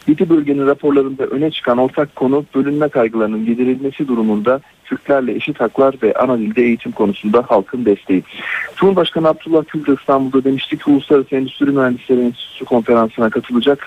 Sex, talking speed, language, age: male, 140 wpm, Turkish, 40-59